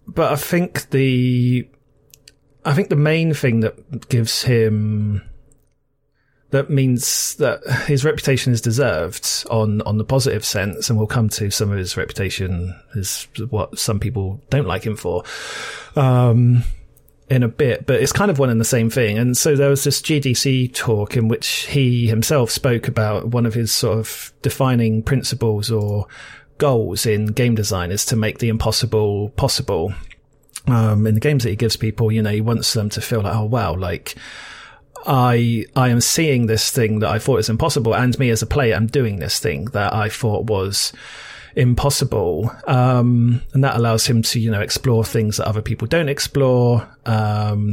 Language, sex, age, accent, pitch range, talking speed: English, male, 30-49, British, 110-130 Hz, 180 wpm